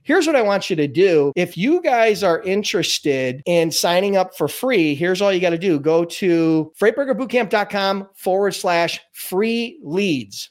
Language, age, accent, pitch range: English, 30-49, American, 175-225 Hz